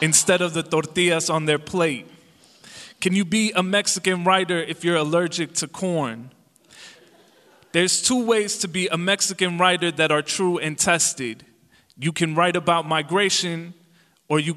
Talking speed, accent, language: 155 wpm, American, English